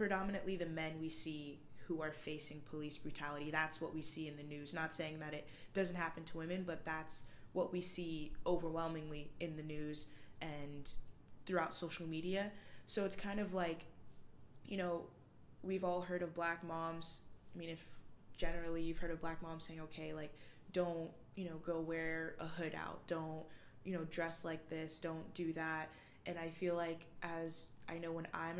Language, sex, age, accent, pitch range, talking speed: English, female, 20-39, American, 155-180 Hz, 185 wpm